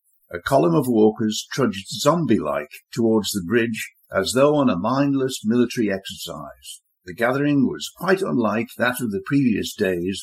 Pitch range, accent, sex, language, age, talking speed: 110-140 Hz, British, male, English, 60-79, 155 wpm